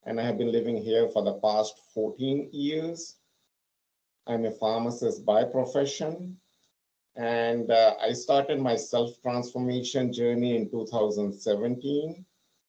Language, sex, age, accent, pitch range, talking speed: English, male, 50-69, Indian, 110-130 Hz, 120 wpm